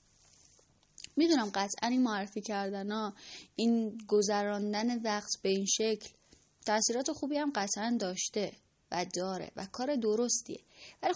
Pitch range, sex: 190-245 Hz, female